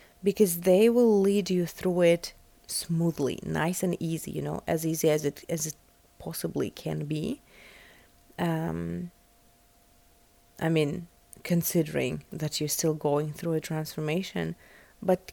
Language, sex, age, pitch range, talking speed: English, female, 30-49, 165-200 Hz, 135 wpm